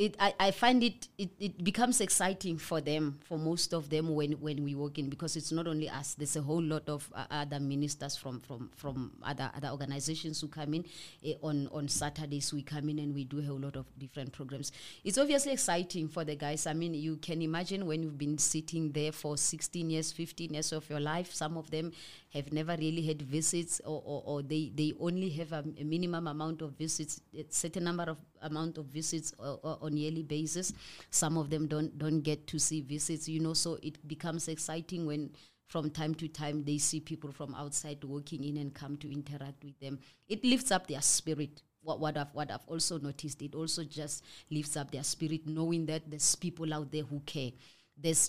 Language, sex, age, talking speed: English, female, 30-49, 220 wpm